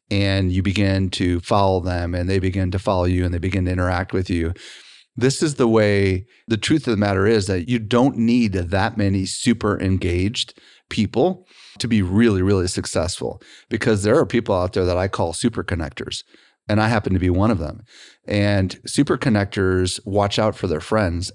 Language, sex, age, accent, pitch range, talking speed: English, male, 30-49, American, 95-110 Hz, 195 wpm